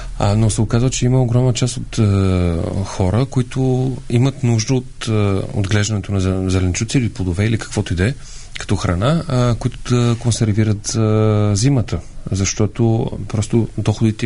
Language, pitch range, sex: Bulgarian, 95-115 Hz, male